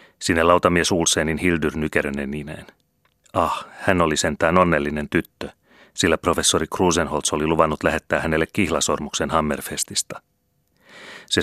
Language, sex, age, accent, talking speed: Finnish, male, 30-49, native, 110 wpm